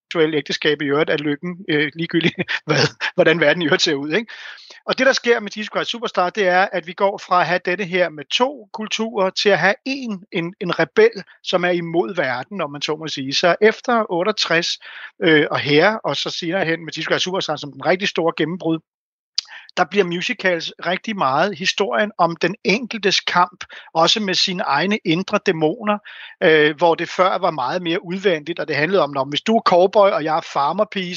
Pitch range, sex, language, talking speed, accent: 155-190 Hz, male, Danish, 205 wpm, native